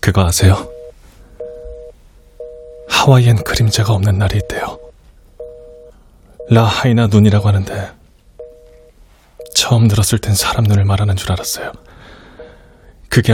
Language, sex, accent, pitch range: Korean, male, native, 85-125 Hz